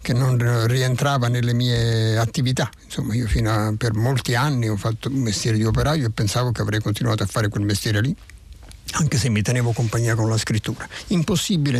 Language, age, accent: Italian, 60-79, native